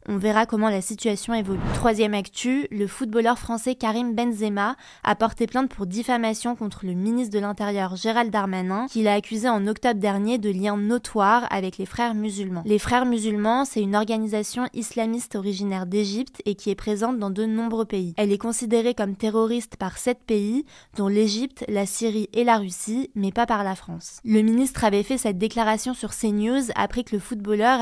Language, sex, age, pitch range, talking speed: French, female, 20-39, 205-235 Hz, 190 wpm